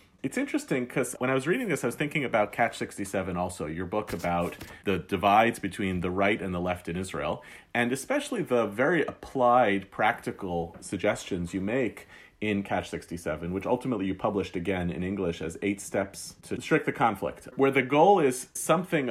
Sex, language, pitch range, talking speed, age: male, English, 95-125 Hz, 185 wpm, 40-59